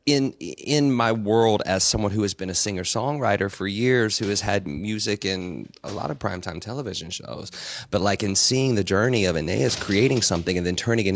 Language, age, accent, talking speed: English, 30-49, American, 210 wpm